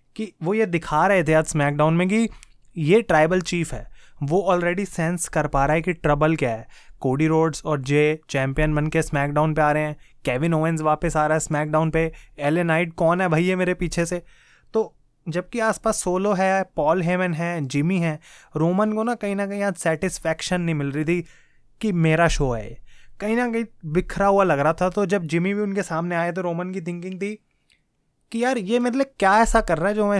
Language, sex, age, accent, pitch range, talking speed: Hindi, male, 20-39, native, 155-190 Hz, 225 wpm